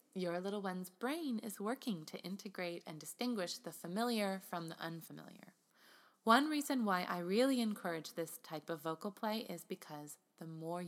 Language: English